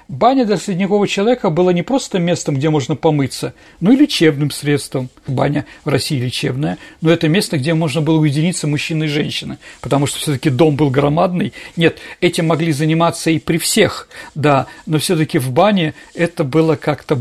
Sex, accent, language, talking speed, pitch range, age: male, native, Russian, 175 wpm, 150-190 Hz, 50-69